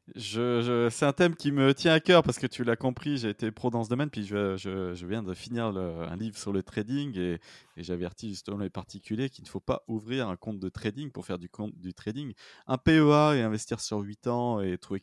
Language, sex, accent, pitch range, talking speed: French, male, French, 95-125 Hz, 255 wpm